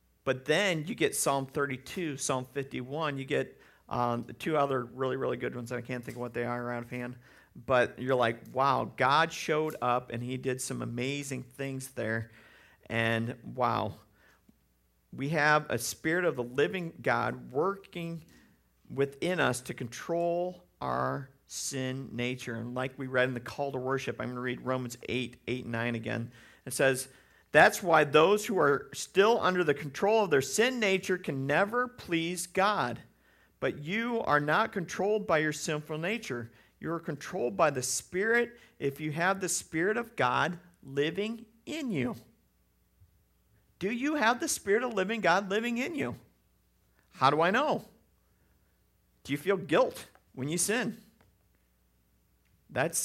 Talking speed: 165 wpm